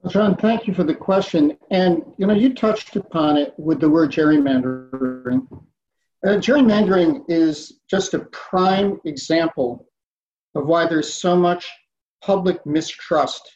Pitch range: 155-190 Hz